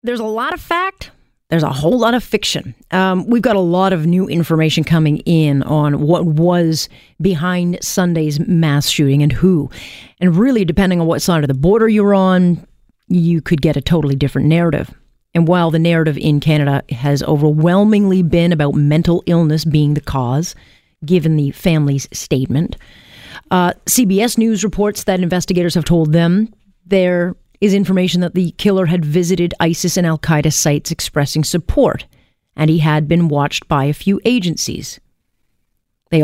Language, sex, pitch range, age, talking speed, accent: English, female, 150-190 Hz, 40-59, 165 wpm, American